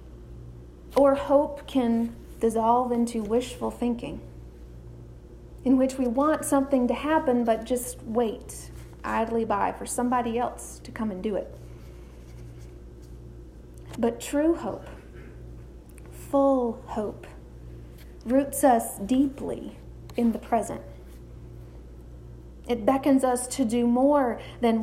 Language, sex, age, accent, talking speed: English, female, 40-59, American, 110 wpm